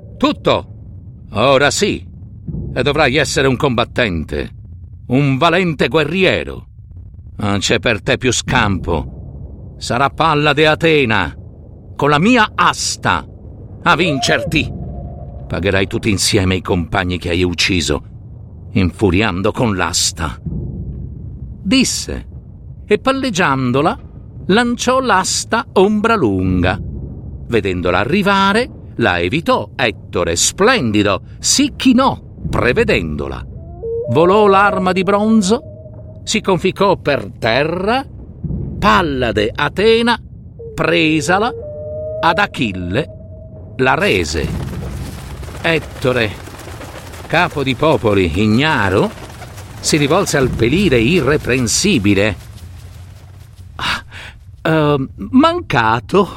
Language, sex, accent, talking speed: Italian, male, native, 85 wpm